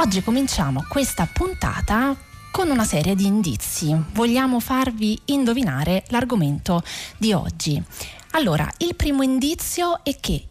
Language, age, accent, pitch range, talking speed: Italian, 30-49, native, 170-255 Hz, 120 wpm